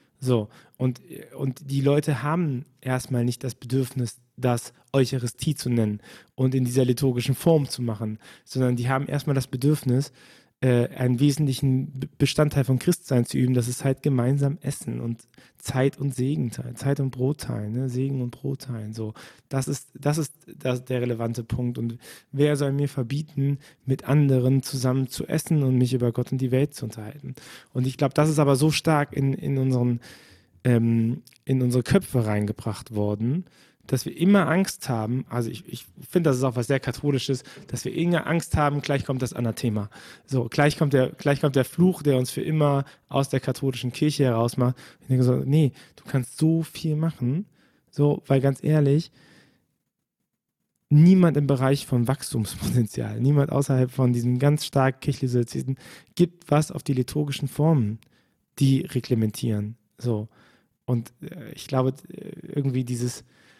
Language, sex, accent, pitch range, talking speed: German, male, German, 125-145 Hz, 170 wpm